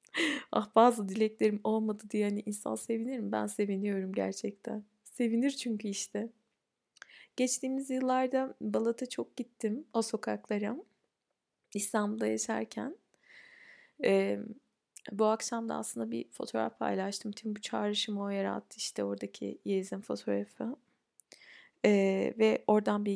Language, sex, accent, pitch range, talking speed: Turkish, female, native, 200-230 Hz, 115 wpm